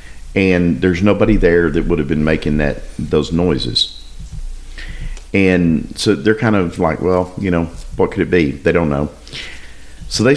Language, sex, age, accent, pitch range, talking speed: English, male, 50-69, American, 65-100 Hz, 175 wpm